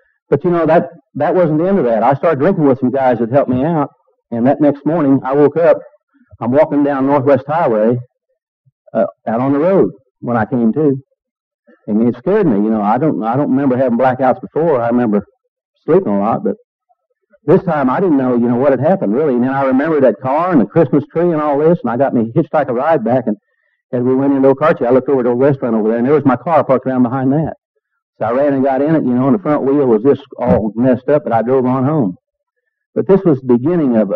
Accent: American